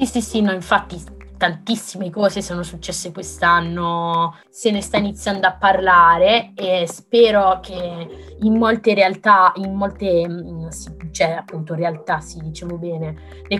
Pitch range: 180-220 Hz